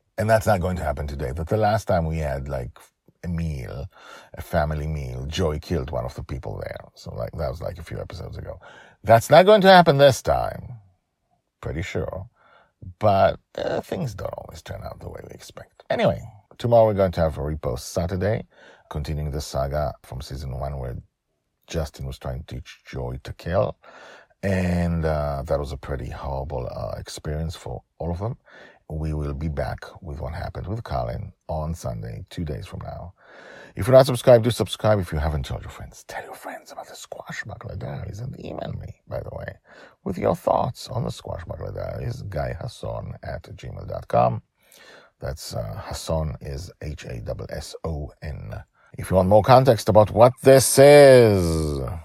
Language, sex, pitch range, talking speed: English, male, 75-110 Hz, 185 wpm